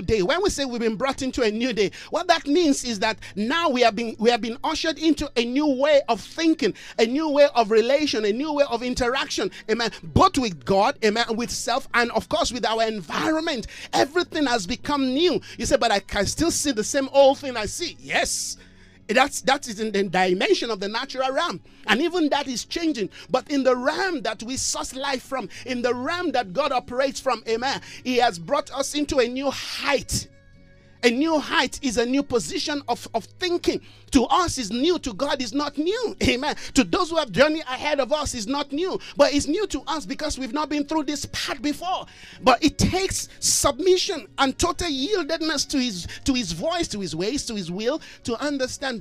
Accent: Nigerian